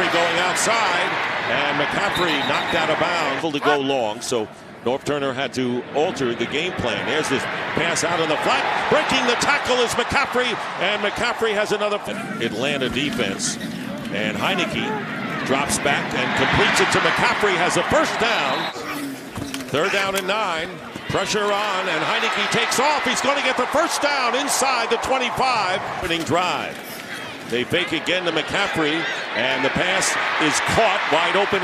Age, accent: 50-69, American